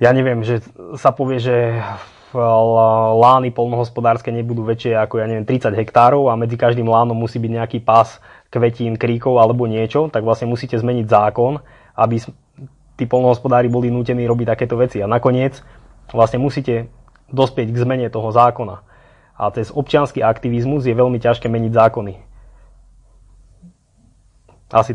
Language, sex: Slovak, male